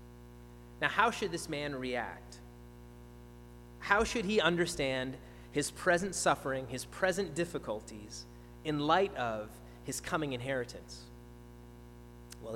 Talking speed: 110 wpm